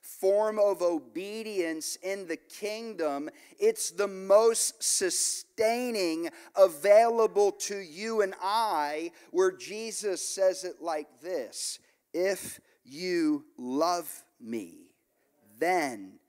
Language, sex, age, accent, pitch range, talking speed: English, male, 40-59, American, 190-290 Hz, 95 wpm